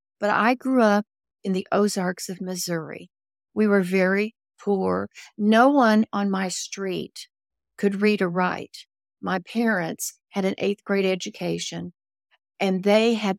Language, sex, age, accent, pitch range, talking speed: English, female, 60-79, American, 180-220 Hz, 145 wpm